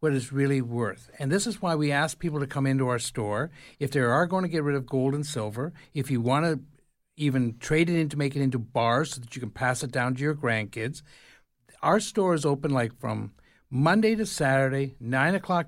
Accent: American